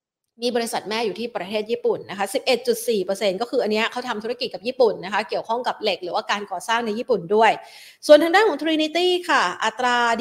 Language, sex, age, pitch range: Thai, female, 30-49, 210-275 Hz